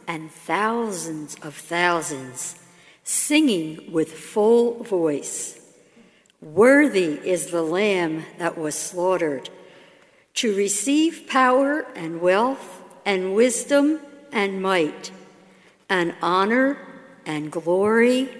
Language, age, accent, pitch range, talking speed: English, 60-79, American, 165-245 Hz, 90 wpm